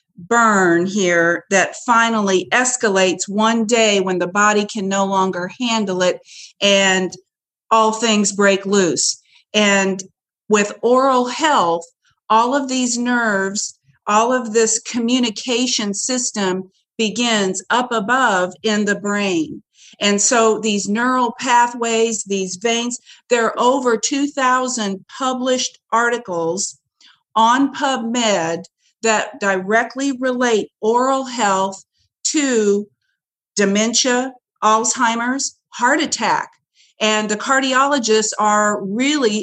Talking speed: 105 wpm